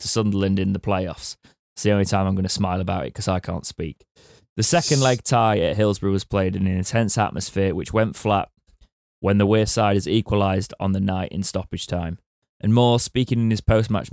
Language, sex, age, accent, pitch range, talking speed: English, male, 20-39, British, 95-110 Hz, 215 wpm